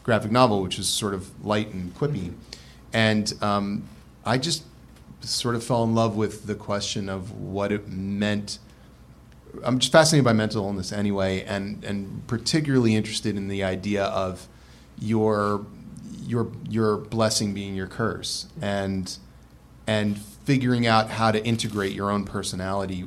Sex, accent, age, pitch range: male, American, 30-49, 100-120 Hz